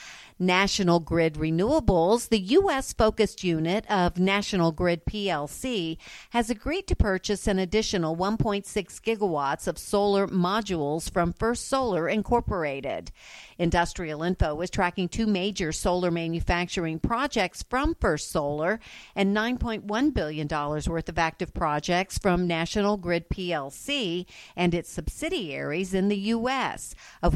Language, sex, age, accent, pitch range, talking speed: English, female, 50-69, American, 170-210 Hz, 120 wpm